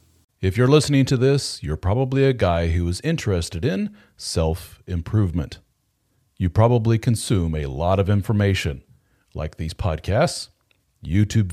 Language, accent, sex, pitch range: English, American, male, 90-120 Hz